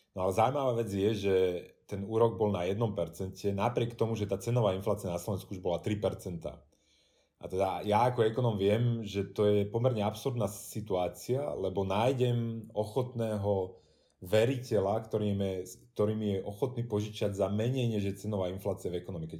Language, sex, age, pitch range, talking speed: Czech, male, 30-49, 95-110 Hz, 160 wpm